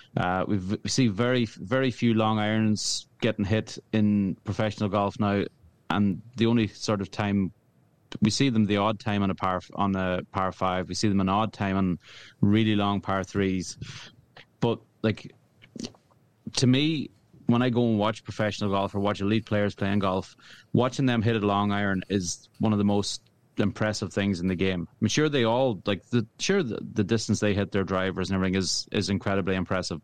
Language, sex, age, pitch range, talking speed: English, male, 30-49, 100-115 Hz, 195 wpm